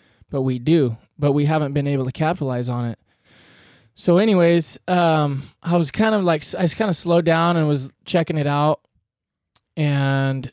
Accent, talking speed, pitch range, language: American, 180 wpm, 135-170 Hz, English